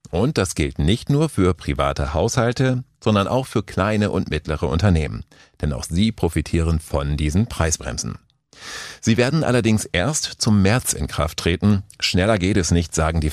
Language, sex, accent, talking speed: German, male, German, 165 wpm